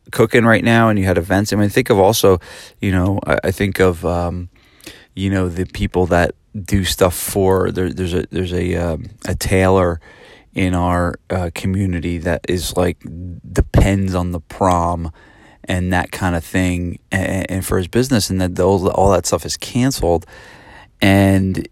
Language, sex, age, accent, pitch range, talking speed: English, male, 30-49, American, 90-105 Hz, 180 wpm